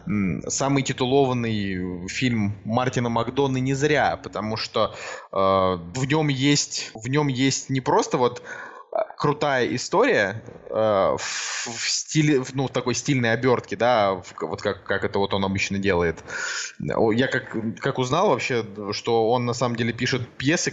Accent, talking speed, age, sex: native, 150 wpm, 20-39, male